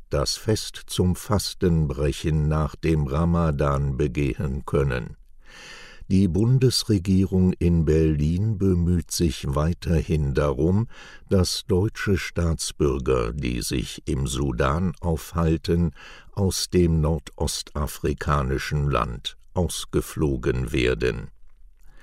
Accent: German